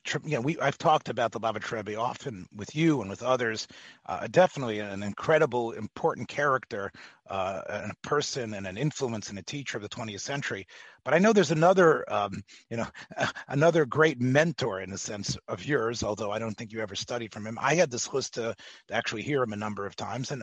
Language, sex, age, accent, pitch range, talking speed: English, male, 30-49, American, 110-155 Hz, 220 wpm